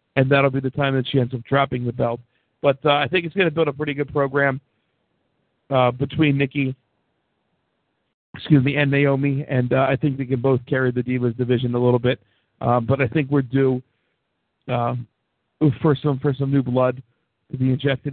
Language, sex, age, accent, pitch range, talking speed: English, male, 50-69, American, 125-140 Hz, 200 wpm